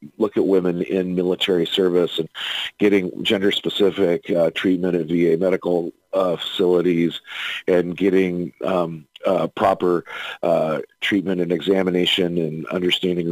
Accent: American